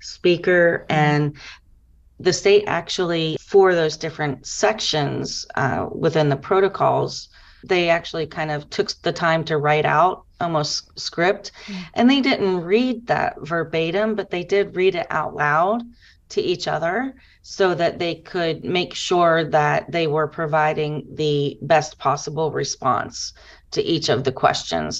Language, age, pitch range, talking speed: English, 30-49, 150-175 Hz, 145 wpm